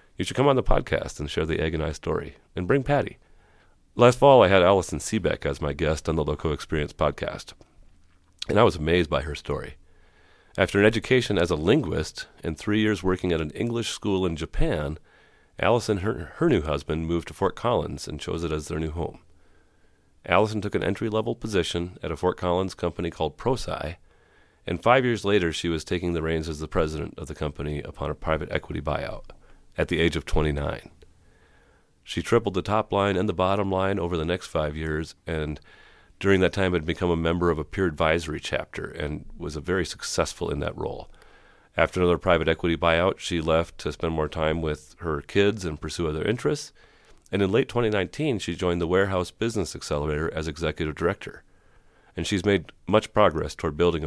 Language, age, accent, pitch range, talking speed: English, 40-59, American, 80-95 Hz, 195 wpm